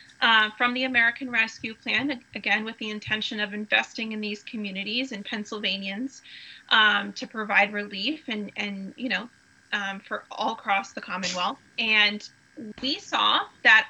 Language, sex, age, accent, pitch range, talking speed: English, female, 30-49, American, 220-275 Hz, 150 wpm